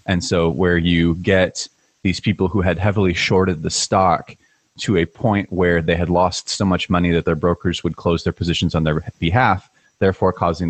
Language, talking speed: English, 195 wpm